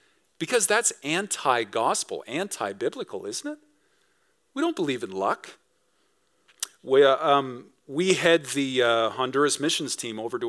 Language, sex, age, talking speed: English, male, 40-59, 120 wpm